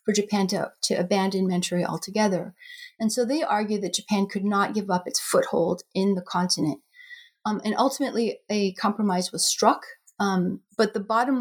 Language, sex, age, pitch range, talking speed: English, female, 30-49, 190-235 Hz, 175 wpm